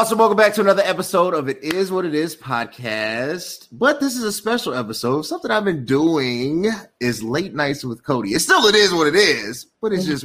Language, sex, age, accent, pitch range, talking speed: English, male, 30-49, American, 120-195 Hz, 220 wpm